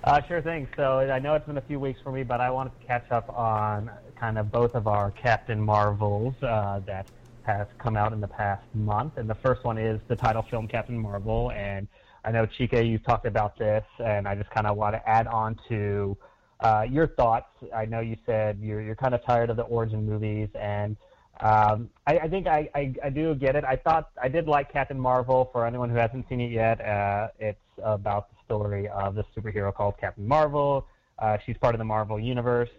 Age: 30-49